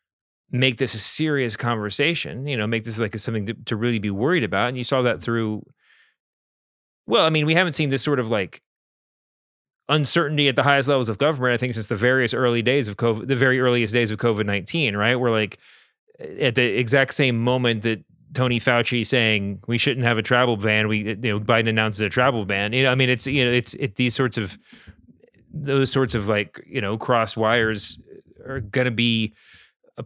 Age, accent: 30-49, American